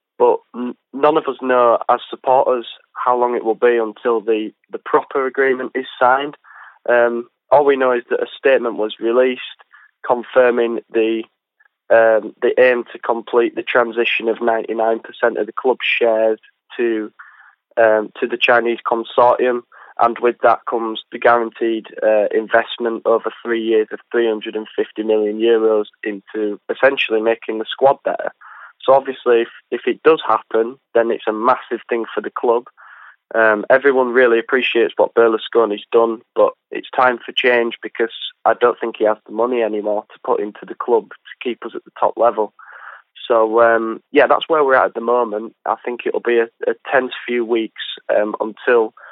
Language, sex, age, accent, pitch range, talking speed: English, male, 20-39, British, 110-125 Hz, 170 wpm